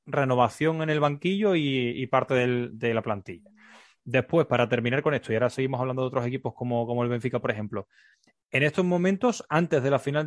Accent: Spanish